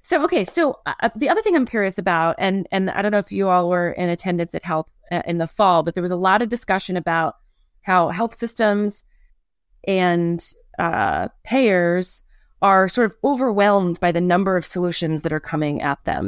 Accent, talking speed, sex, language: American, 205 wpm, female, English